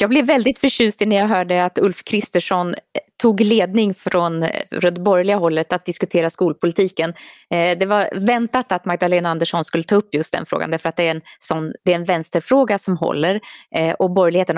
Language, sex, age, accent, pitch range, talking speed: Swedish, female, 20-39, native, 165-205 Hz, 175 wpm